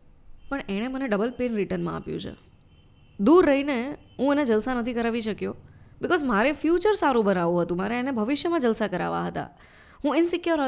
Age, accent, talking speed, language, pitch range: 20-39, native, 170 wpm, Gujarati, 190-265 Hz